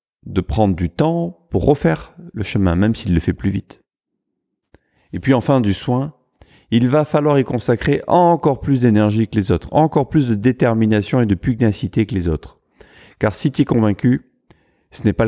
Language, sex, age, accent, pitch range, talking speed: French, male, 40-59, French, 110-155 Hz, 190 wpm